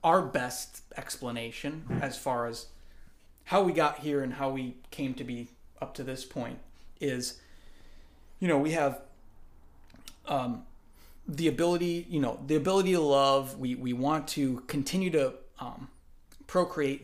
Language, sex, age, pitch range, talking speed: English, male, 30-49, 120-150 Hz, 150 wpm